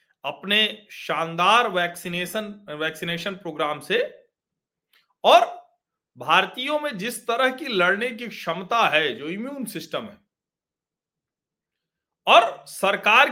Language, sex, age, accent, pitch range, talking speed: Hindi, male, 40-59, native, 170-250 Hz, 100 wpm